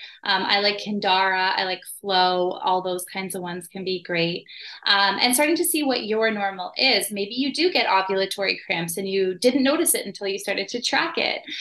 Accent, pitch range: American, 190-245 Hz